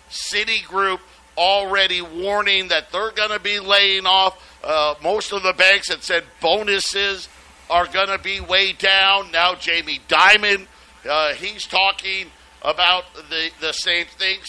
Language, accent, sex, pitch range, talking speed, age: English, American, male, 165-200 Hz, 145 wpm, 50-69